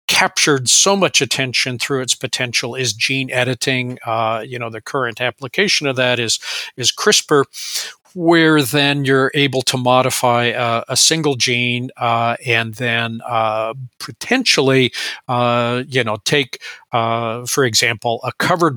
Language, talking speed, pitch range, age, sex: English, 145 wpm, 120-145 Hz, 50-69, male